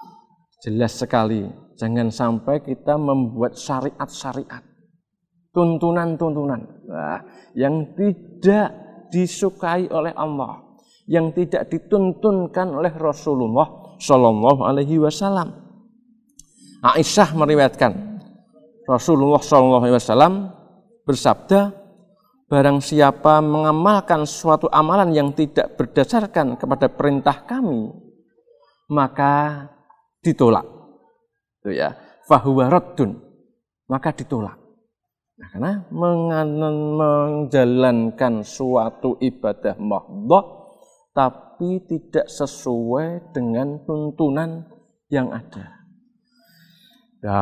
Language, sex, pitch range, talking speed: Indonesian, male, 130-190 Hz, 75 wpm